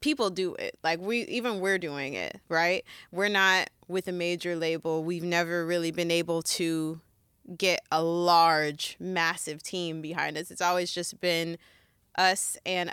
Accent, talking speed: American, 165 wpm